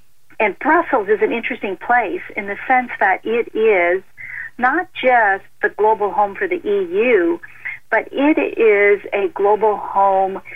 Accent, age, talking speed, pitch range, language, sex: American, 50-69, 150 wpm, 200-330 Hz, English, female